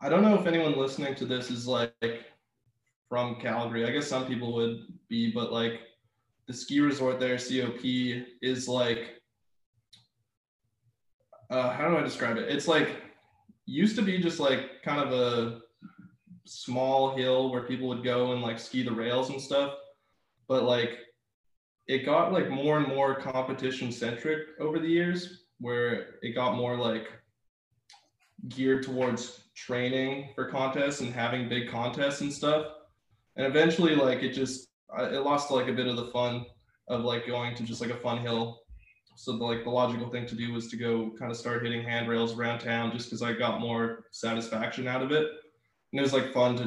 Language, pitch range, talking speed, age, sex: English, 115-130 Hz, 180 wpm, 20-39, male